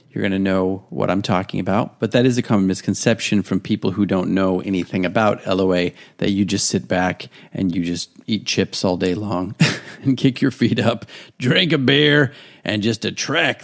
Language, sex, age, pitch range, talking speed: English, male, 40-59, 95-120 Hz, 200 wpm